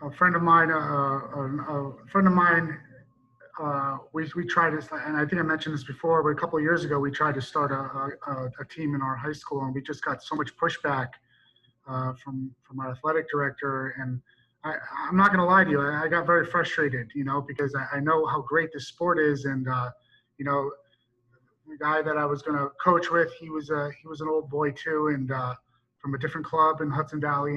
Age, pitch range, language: 30-49, 140-175 Hz, English